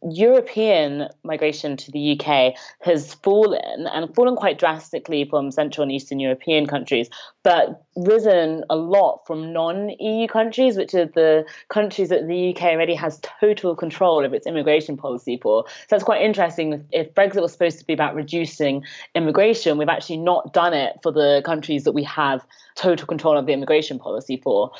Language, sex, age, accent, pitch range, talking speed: English, female, 30-49, British, 150-190 Hz, 170 wpm